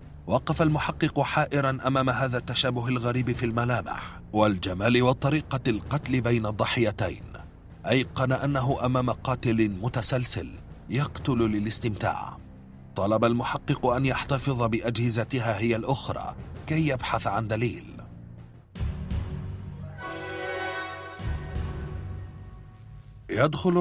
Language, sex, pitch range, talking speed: Arabic, male, 100-130 Hz, 85 wpm